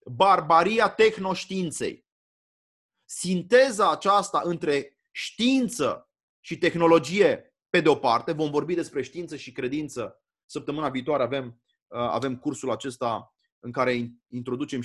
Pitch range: 110-150 Hz